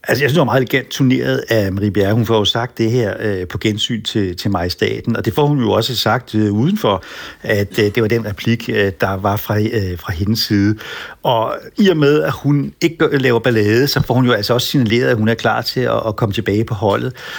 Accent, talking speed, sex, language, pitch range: native, 245 wpm, male, Danish, 110-130 Hz